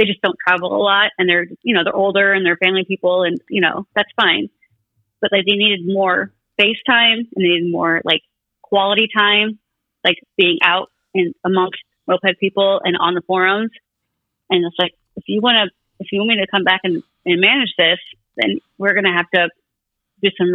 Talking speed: 210 wpm